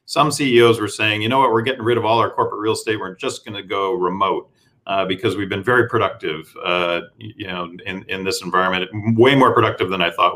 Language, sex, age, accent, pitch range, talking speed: English, male, 40-59, American, 95-120 Hz, 240 wpm